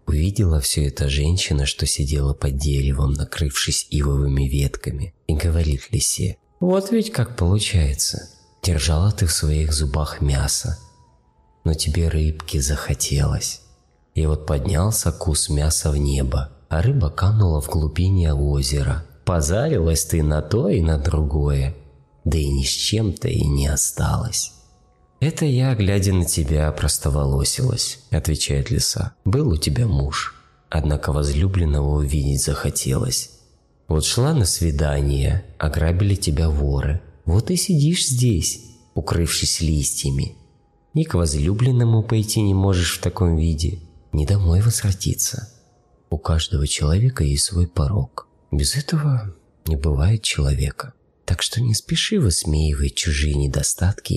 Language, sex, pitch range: Russian, male, 70-95 Hz